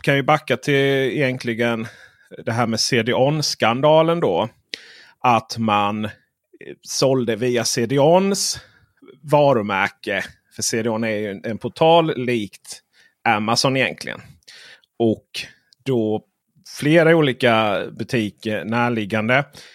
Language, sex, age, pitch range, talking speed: Swedish, male, 30-49, 115-155 Hz, 95 wpm